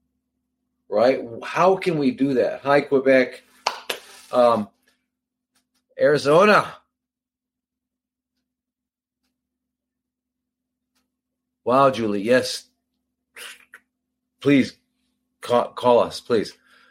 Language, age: English, 40-59